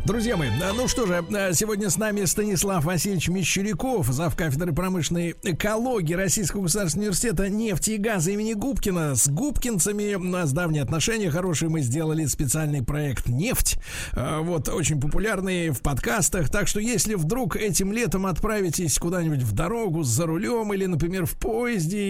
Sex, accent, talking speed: male, native, 150 wpm